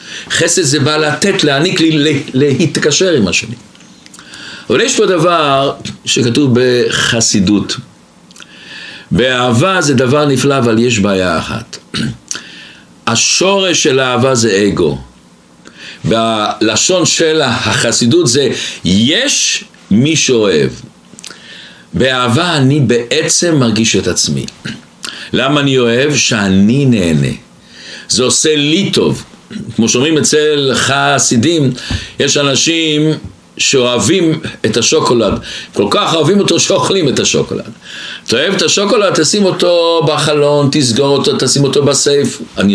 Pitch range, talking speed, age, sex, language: 120-160 Hz, 110 wpm, 60-79, male, Hebrew